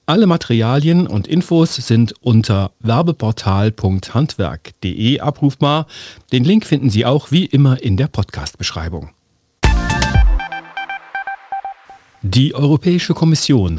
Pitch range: 110-150 Hz